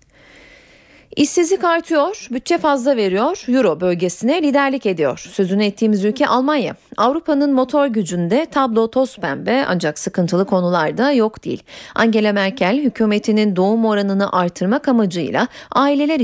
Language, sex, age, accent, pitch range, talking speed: Turkish, female, 40-59, native, 185-265 Hz, 120 wpm